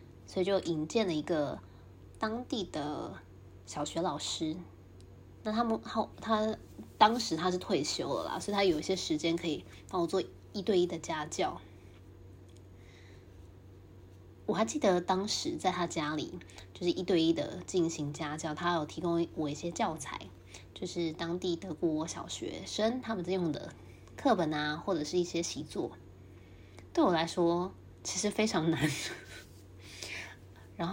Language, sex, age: Chinese, female, 20-39